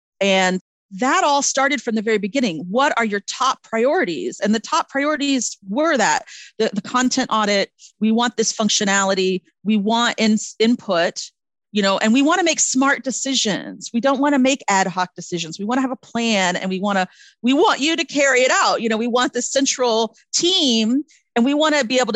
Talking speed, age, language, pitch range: 210 wpm, 40-59, English, 190-260 Hz